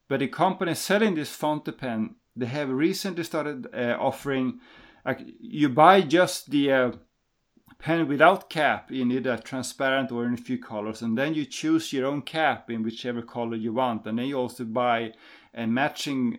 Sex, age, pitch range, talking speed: male, 30-49, 120-145 Hz, 180 wpm